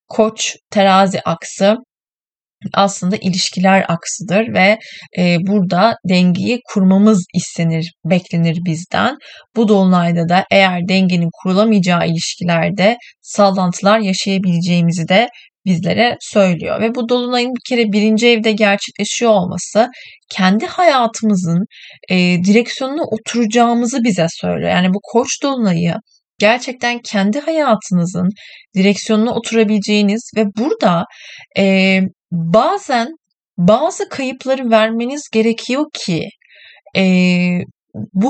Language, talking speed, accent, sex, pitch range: Turkish, 95 wpm, native, female, 190-235 Hz